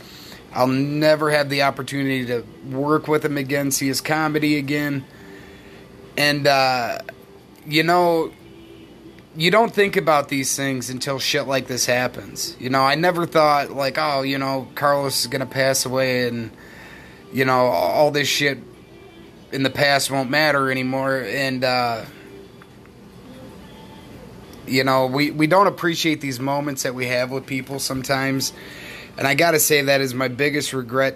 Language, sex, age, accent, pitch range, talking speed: English, male, 30-49, American, 125-145 Hz, 160 wpm